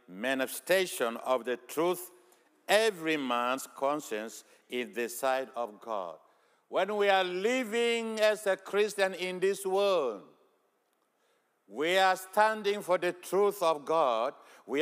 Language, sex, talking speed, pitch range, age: English, male, 125 wpm, 135-200 Hz, 60-79